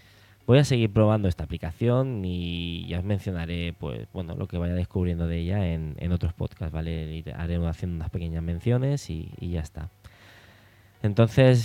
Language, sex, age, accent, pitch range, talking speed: Spanish, male, 20-39, Spanish, 85-110 Hz, 175 wpm